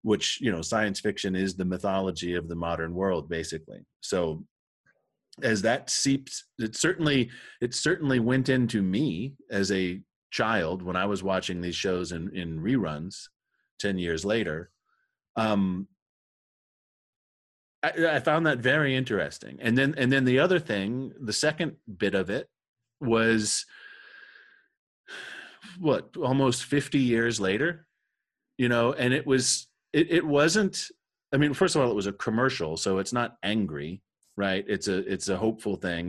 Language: English